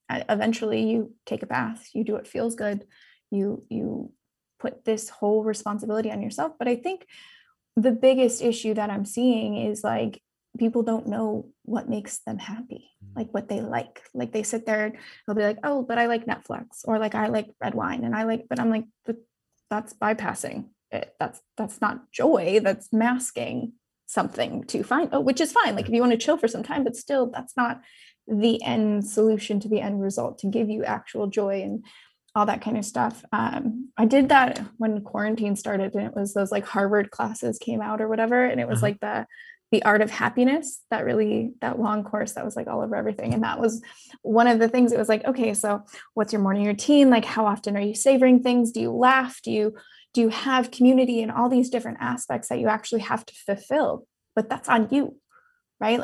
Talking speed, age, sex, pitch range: 215 wpm, 20-39, female, 215-245 Hz